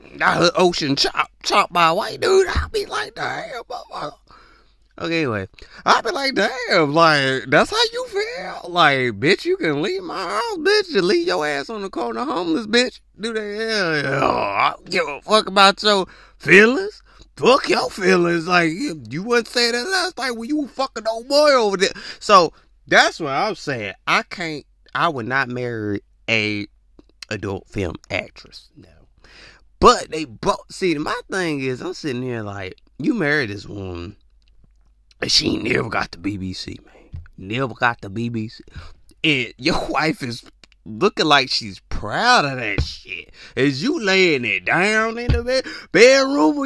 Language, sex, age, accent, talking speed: English, male, 30-49, American, 175 wpm